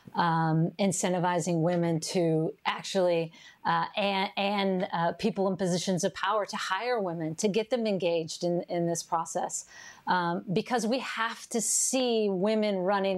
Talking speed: 150 wpm